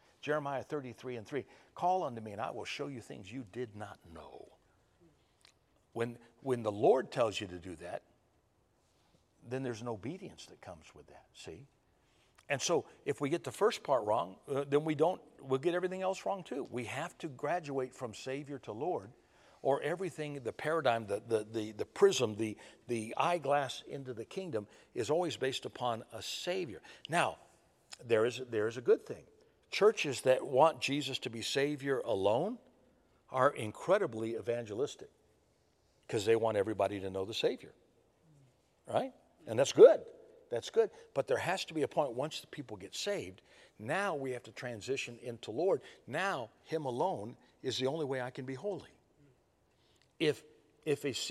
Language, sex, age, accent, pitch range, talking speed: English, male, 60-79, American, 120-160 Hz, 175 wpm